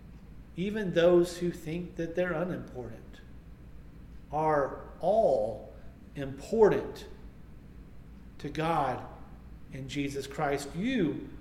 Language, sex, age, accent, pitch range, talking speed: English, male, 40-59, American, 140-170 Hz, 85 wpm